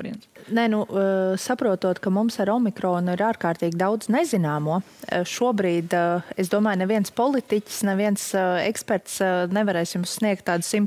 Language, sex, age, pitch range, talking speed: English, female, 30-49, 175-210 Hz, 120 wpm